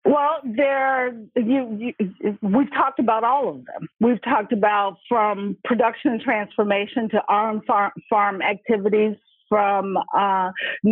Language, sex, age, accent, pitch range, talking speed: English, female, 50-69, American, 200-230 Hz, 115 wpm